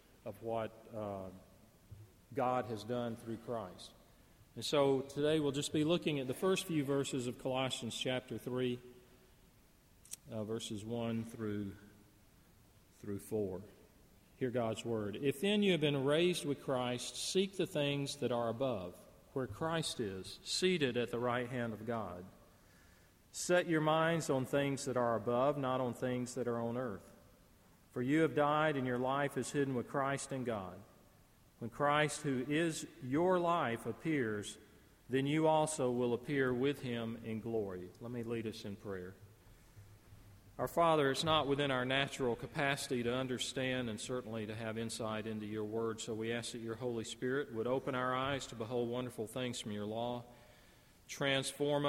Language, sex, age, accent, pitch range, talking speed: English, male, 40-59, American, 110-140 Hz, 165 wpm